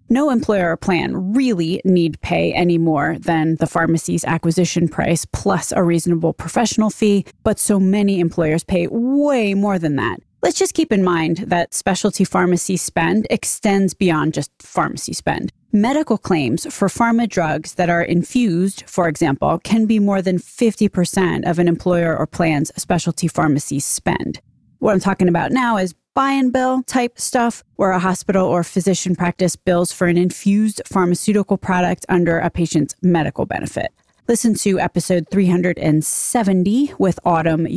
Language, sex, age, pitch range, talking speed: English, female, 20-39, 170-210 Hz, 160 wpm